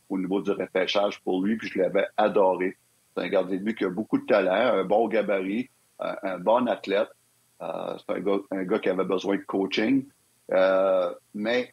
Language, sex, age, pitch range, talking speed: French, male, 60-79, 100-135 Hz, 200 wpm